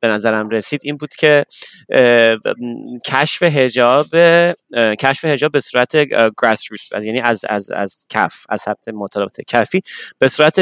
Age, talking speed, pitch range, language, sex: 30-49, 135 wpm, 110-140 Hz, Persian, male